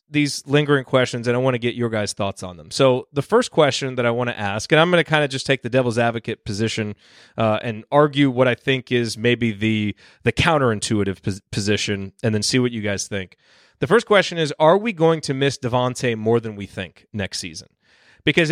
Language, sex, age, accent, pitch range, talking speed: English, male, 30-49, American, 115-145 Hz, 230 wpm